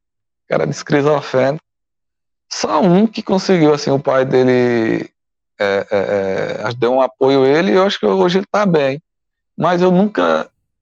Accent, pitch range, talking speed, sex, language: Brazilian, 115-185 Hz, 160 wpm, male, Portuguese